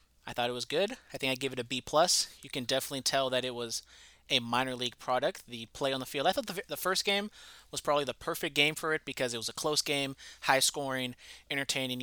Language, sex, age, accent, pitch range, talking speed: English, male, 30-49, American, 125-160 Hz, 255 wpm